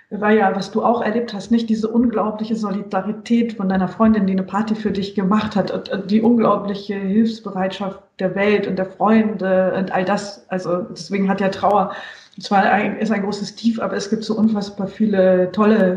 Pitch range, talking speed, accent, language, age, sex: 195-225 Hz, 190 wpm, German, German, 40-59, female